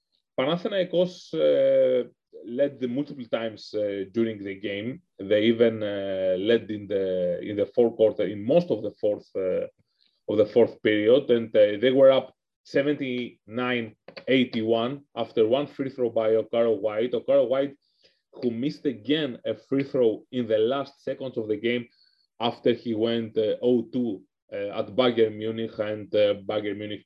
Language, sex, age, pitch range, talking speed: English, male, 30-49, 110-140 Hz, 155 wpm